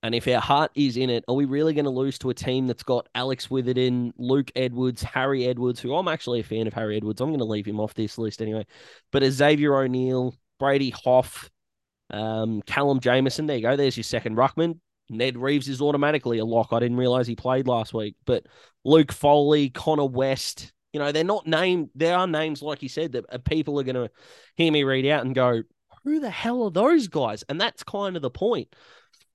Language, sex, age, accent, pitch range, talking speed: English, male, 20-39, Australian, 115-140 Hz, 220 wpm